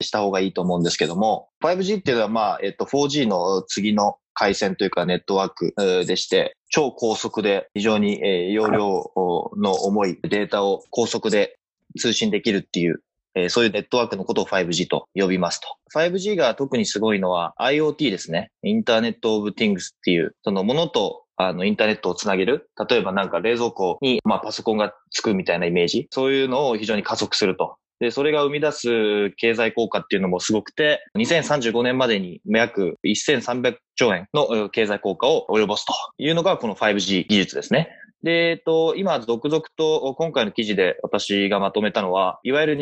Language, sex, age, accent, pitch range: Japanese, male, 20-39, native, 105-155 Hz